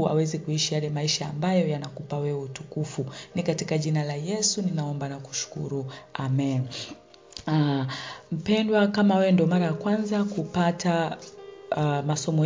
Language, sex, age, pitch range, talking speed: Swahili, female, 40-59, 145-185 Hz, 135 wpm